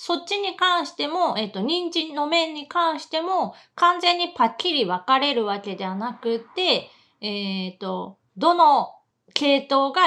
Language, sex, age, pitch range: Japanese, female, 30-49, 210-330 Hz